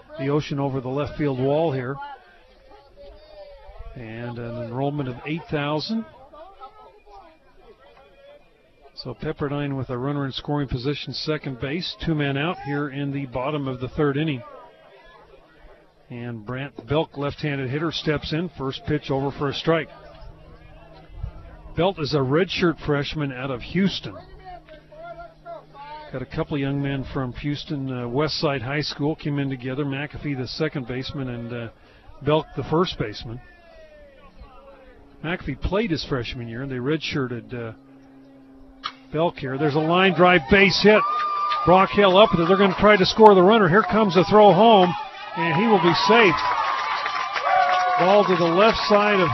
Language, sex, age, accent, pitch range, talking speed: English, male, 40-59, American, 135-195 Hz, 150 wpm